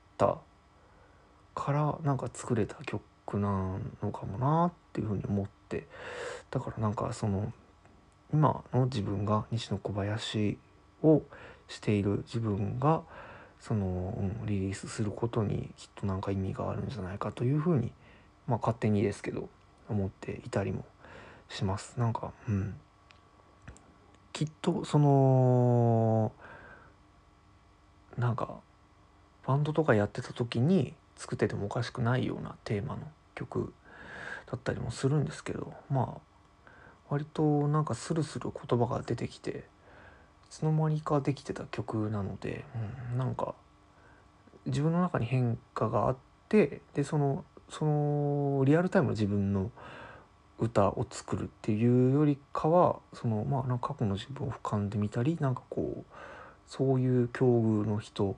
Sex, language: male, Japanese